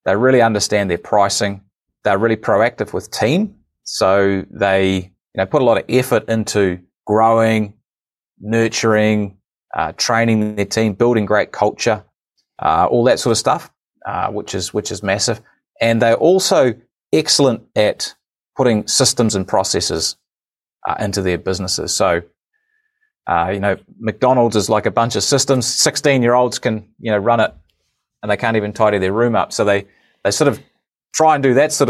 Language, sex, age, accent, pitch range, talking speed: English, male, 30-49, Australian, 100-130 Hz, 165 wpm